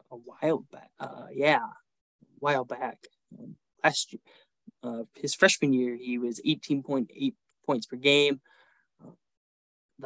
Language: English